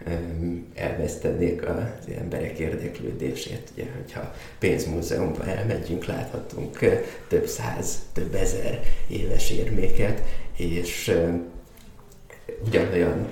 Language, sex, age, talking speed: Hungarian, male, 20-39, 75 wpm